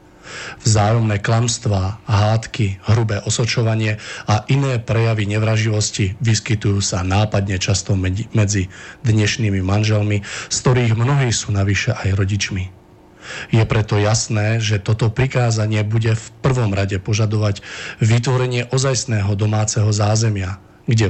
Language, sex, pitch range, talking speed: Slovak, male, 100-120 Hz, 110 wpm